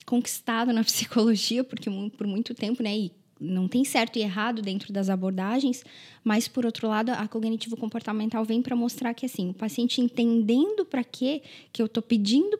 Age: 10-29